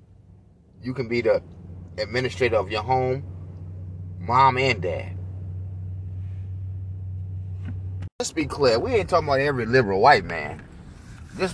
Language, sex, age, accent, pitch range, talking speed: English, male, 30-49, American, 95-130 Hz, 120 wpm